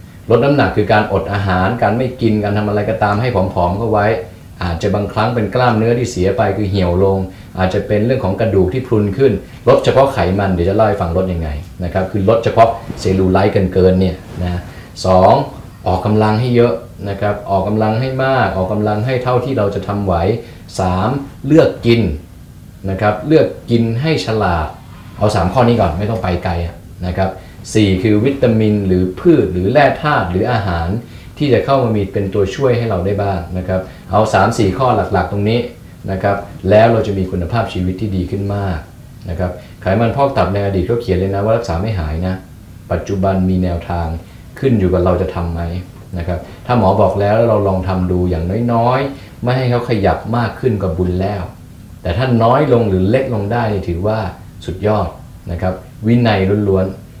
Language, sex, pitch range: English, male, 95-115 Hz